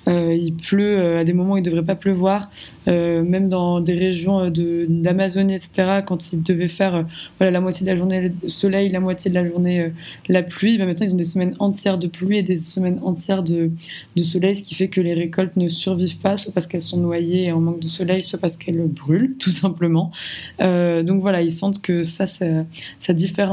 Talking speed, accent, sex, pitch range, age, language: 235 wpm, French, female, 170-195 Hz, 20-39, French